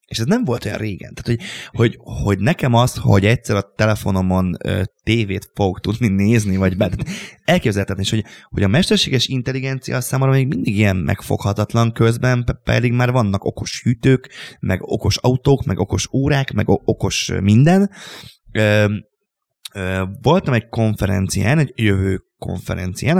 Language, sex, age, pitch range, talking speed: Hungarian, male, 20-39, 100-125 Hz, 155 wpm